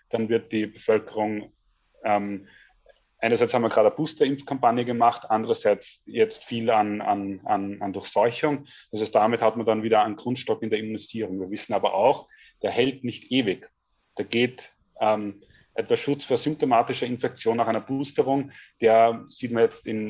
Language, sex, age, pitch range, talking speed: German, male, 30-49, 110-125 Hz, 165 wpm